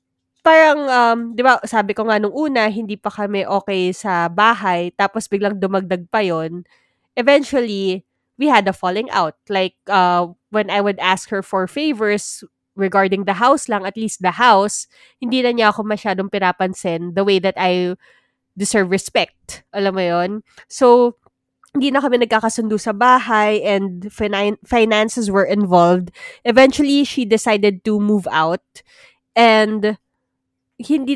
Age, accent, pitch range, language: 20-39, native, 190-235 Hz, Filipino